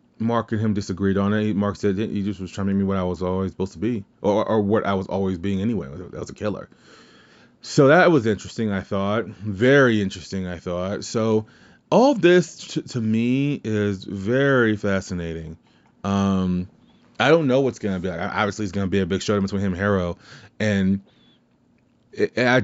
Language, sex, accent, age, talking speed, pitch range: English, male, American, 20-39, 200 wpm, 100-120 Hz